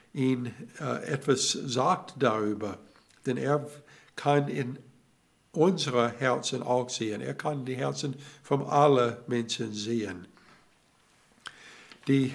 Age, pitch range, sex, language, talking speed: 60-79, 120-145 Hz, male, German, 105 wpm